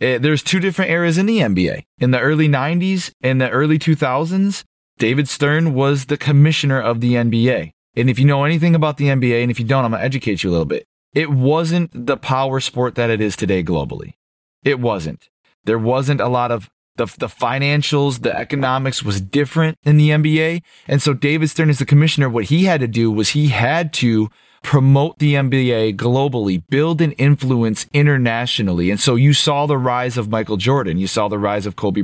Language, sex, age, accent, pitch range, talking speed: English, male, 30-49, American, 120-150 Hz, 205 wpm